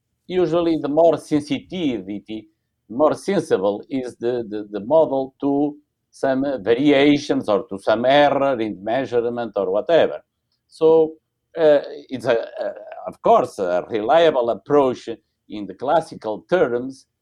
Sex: male